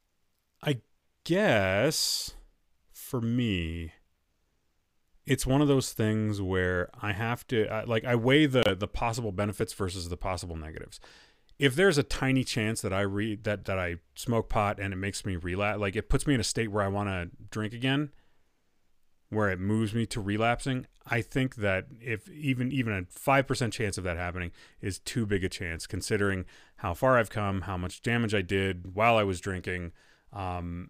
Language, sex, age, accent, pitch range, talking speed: English, male, 30-49, American, 90-125 Hz, 180 wpm